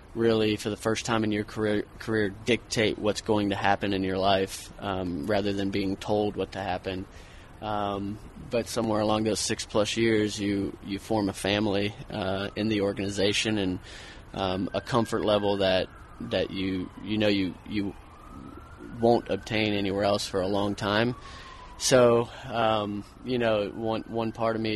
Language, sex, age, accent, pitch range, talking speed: English, male, 20-39, American, 95-110 Hz, 170 wpm